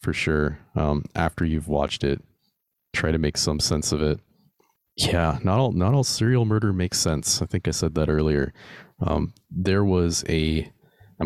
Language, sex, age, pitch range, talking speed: English, male, 30-49, 75-90 Hz, 175 wpm